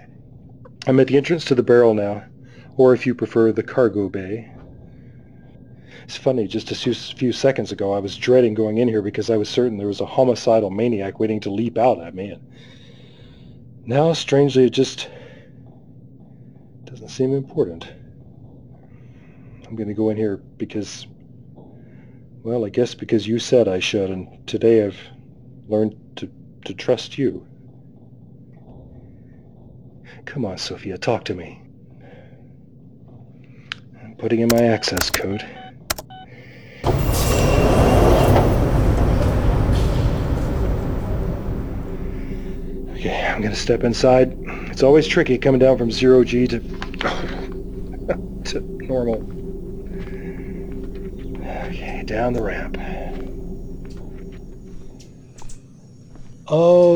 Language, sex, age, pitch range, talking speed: English, male, 40-59, 110-130 Hz, 110 wpm